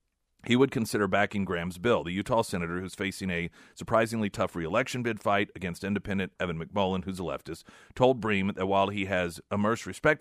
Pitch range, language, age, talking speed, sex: 85-120 Hz, English, 40-59, 190 wpm, male